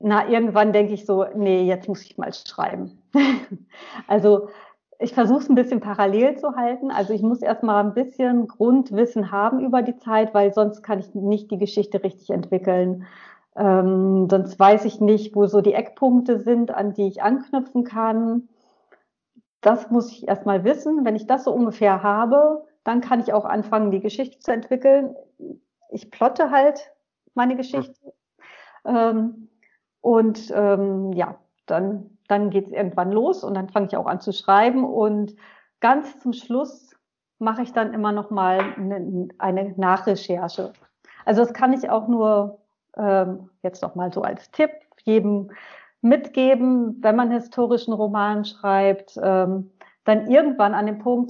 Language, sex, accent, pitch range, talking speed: German, female, German, 200-250 Hz, 160 wpm